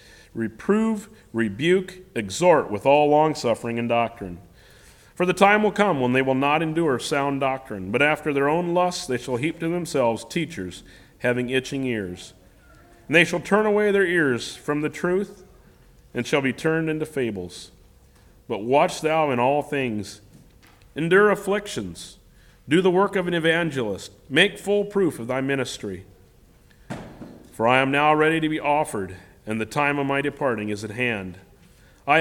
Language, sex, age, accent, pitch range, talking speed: English, male, 40-59, American, 110-160 Hz, 165 wpm